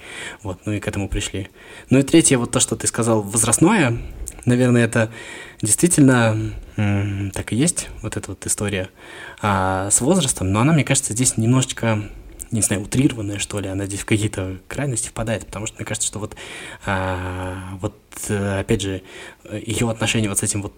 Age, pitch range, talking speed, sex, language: 20-39, 100-115 Hz, 170 wpm, male, Russian